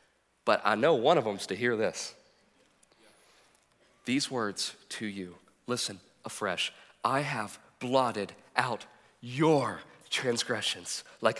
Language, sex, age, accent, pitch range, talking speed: English, male, 40-59, American, 155-230 Hz, 120 wpm